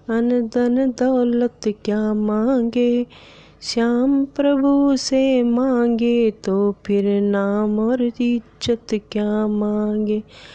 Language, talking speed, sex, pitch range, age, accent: Hindi, 90 wpm, female, 230-300 Hz, 20-39, native